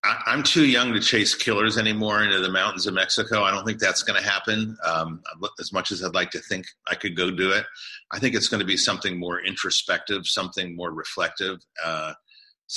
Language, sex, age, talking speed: English, male, 40-59, 205 wpm